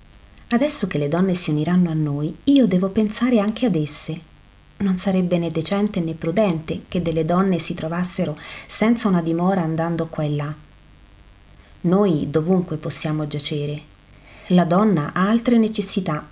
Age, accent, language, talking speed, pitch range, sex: 30-49, native, Italian, 150 wpm, 150-200 Hz, female